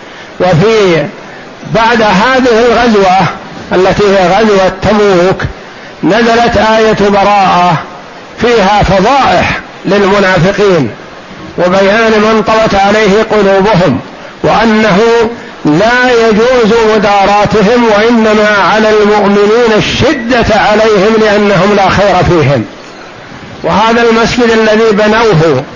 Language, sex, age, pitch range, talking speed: Arabic, male, 60-79, 195-225 Hz, 85 wpm